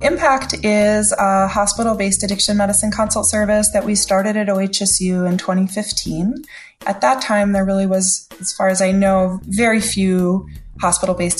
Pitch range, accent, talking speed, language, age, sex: 175-210 Hz, American, 155 wpm, English, 20-39, female